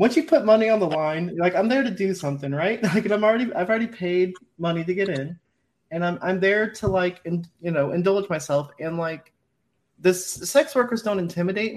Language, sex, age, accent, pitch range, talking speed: English, male, 30-49, American, 165-200 Hz, 215 wpm